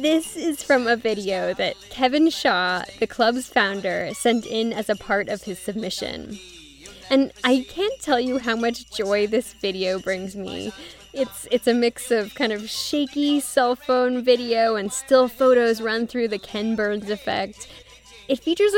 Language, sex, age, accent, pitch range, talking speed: English, female, 10-29, American, 210-265 Hz, 170 wpm